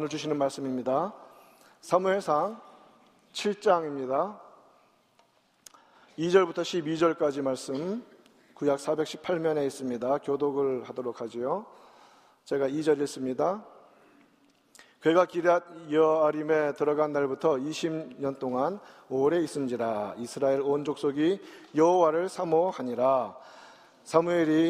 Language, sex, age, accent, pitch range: Korean, male, 40-59, native, 135-160 Hz